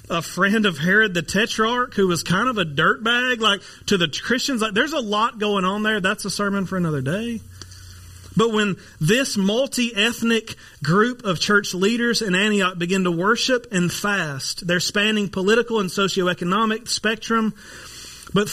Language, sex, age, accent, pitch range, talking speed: English, male, 30-49, American, 155-205 Hz, 165 wpm